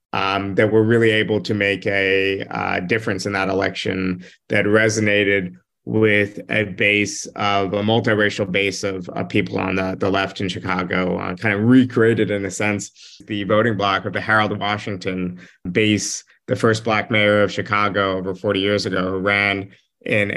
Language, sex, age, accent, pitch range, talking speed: English, male, 30-49, American, 95-110 Hz, 170 wpm